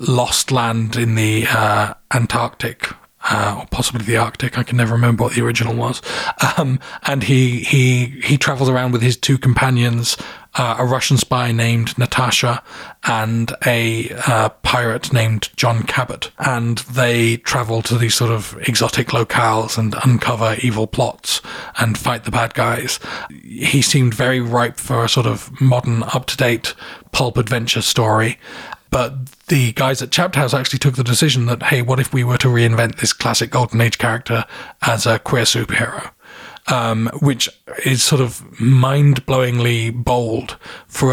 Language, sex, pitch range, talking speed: English, male, 115-130 Hz, 160 wpm